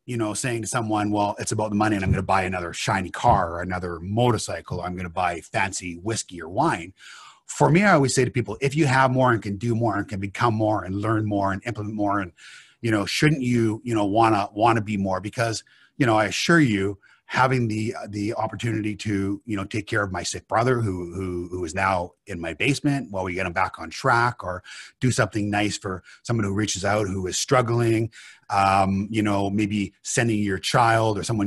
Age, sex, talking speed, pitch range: 30-49, male, 235 wpm, 100-120 Hz